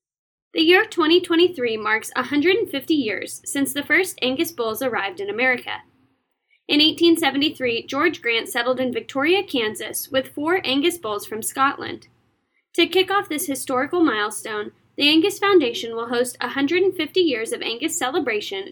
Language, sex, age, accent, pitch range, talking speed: English, female, 10-29, American, 250-370 Hz, 140 wpm